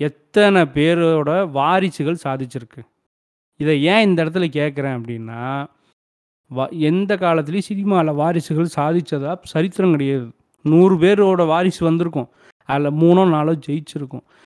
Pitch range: 140-180 Hz